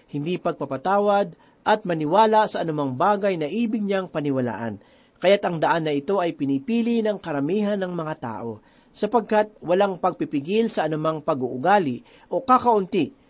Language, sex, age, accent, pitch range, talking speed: Filipino, male, 40-59, native, 155-220 Hz, 140 wpm